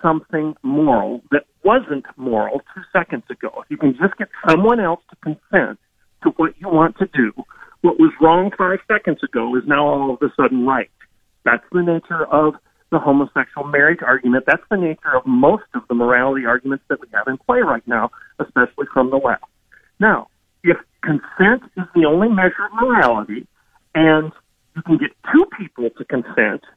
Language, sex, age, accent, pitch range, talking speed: English, male, 40-59, American, 140-210 Hz, 180 wpm